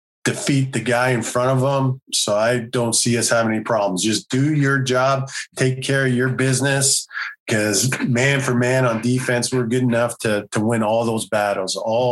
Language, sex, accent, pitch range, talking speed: English, male, American, 105-125 Hz, 200 wpm